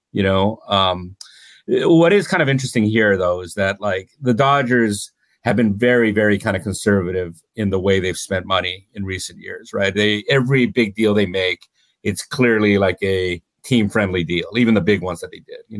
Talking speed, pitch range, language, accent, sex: 200 wpm, 95-110 Hz, English, American, male